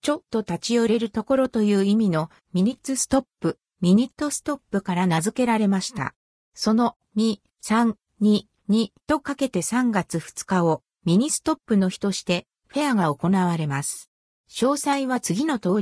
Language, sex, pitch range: Japanese, female, 180-265 Hz